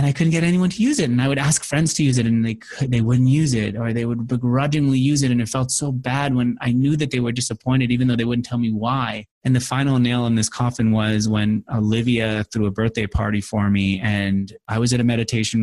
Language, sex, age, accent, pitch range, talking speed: English, male, 20-39, American, 105-150 Hz, 265 wpm